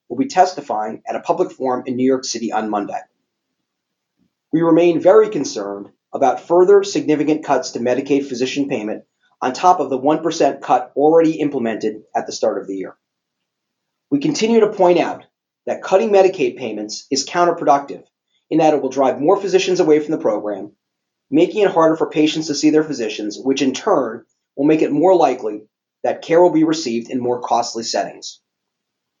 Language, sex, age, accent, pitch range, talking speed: English, male, 30-49, American, 125-160 Hz, 180 wpm